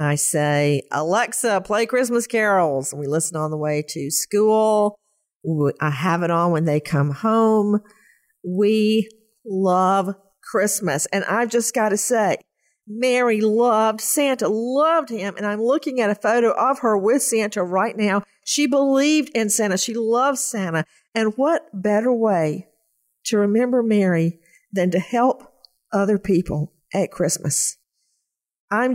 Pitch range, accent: 190-245 Hz, American